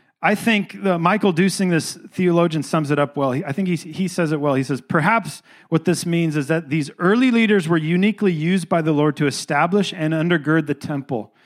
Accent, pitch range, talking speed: American, 150-195 Hz, 215 wpm